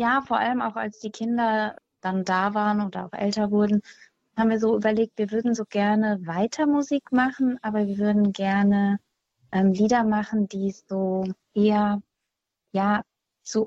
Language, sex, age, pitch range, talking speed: German, female, 30-49, 195-220 Hz, 160 wpm